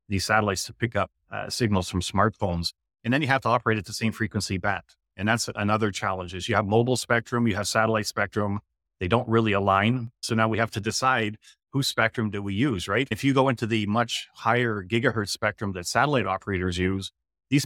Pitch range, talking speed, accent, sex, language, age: 95-115 Hz, 215 wpm, American, male, English, 30-49